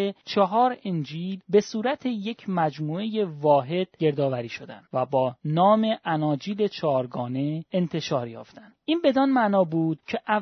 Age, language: 30-49, Persian